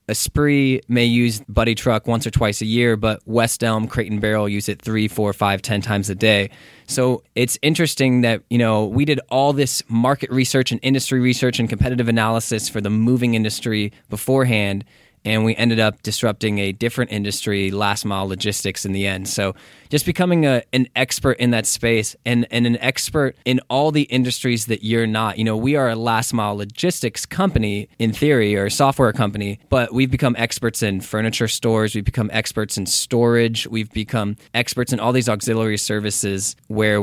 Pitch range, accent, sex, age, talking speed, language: 105-125 Hz, American, male, 20-39, 190 wpm, English